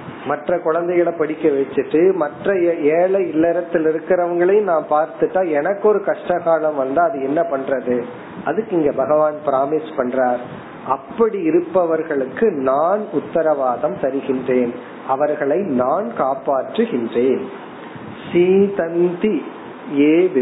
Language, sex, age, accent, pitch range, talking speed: Tamil, male, 40-59, native, 140-175 Hz, 90 wpm